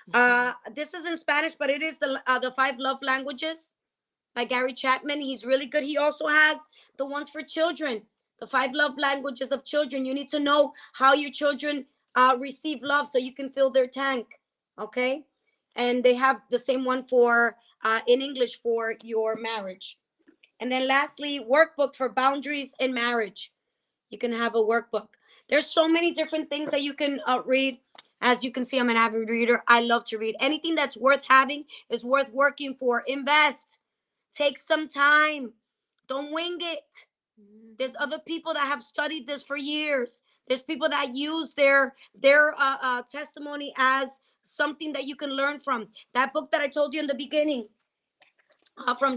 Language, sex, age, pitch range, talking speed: English, female, 20-39, 255-290 Hz, 180 wpm